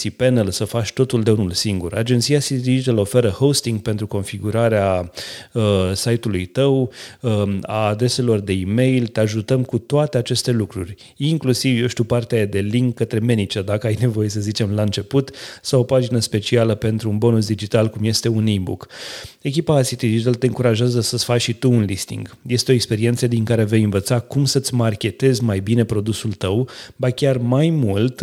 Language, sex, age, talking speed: Romanian, male, 30-49, 180 wpm